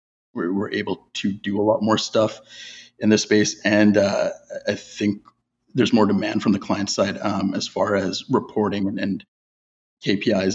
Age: 30-49